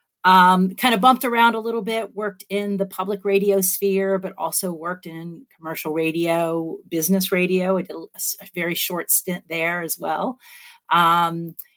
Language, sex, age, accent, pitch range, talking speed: English, female, 40-59, American, 165-200 Hz, 165 wpm